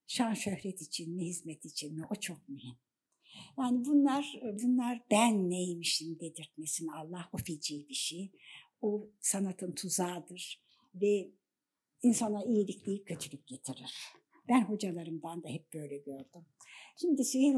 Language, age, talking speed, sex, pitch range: Turkish, 60-79, 130 wpm, female, 165-250 Hz